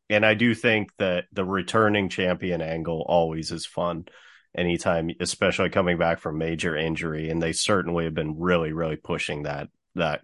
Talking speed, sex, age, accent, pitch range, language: 170 wpm, male, 30-49, American, 85-95 Hz, English